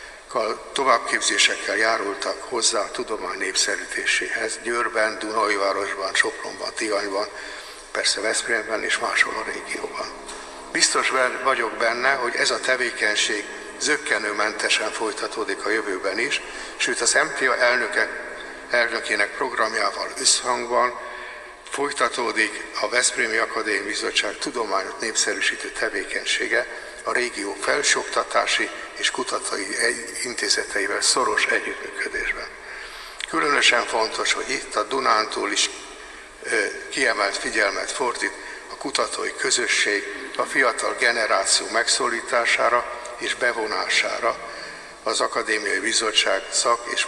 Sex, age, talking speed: male, 60-79, 95 wpm